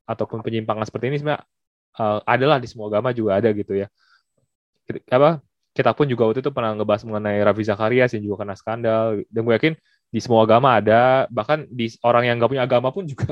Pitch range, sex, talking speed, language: 105-130 Hz, male, 205 wpm, Indonesian